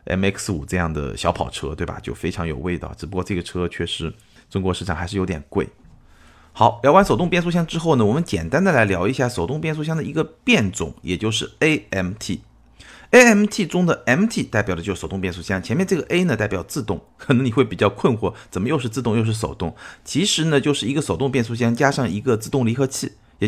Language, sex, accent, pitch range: Chinese, male, native, 95-135 Hz